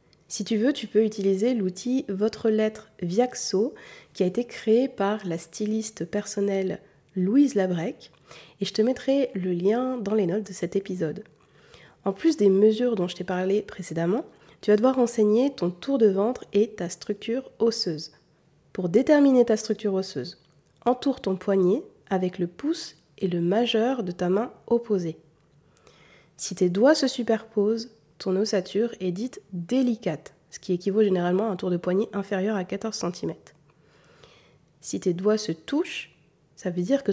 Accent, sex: French, female